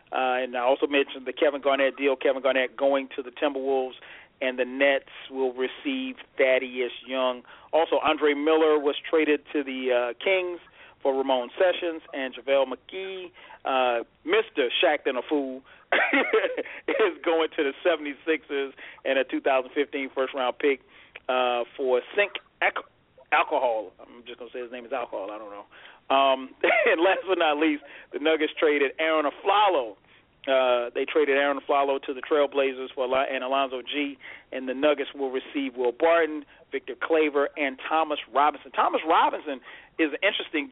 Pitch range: 130-165 Hz